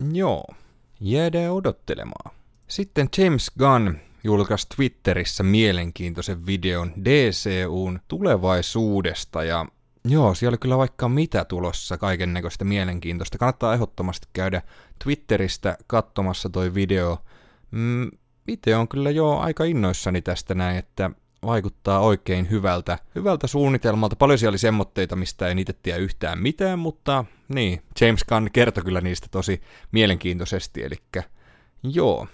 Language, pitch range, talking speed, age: Finnish, 90-120 Hz, 120 wpm, 30-49